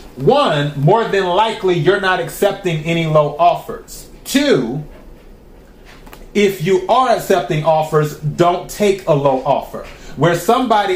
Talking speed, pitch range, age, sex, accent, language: 125 wpm, 145-180 Hz, 30-49, male, American, English